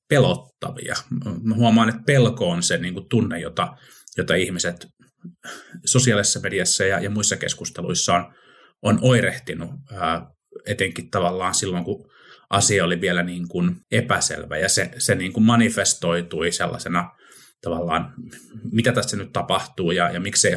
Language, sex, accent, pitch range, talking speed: Finnish, male, native, 90-125 Hz, 135 wpm